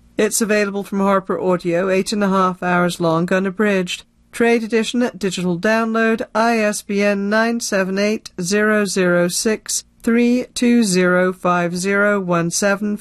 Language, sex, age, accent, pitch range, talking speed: English, female, 40-59, British, 175-210 Hz, 90 wpm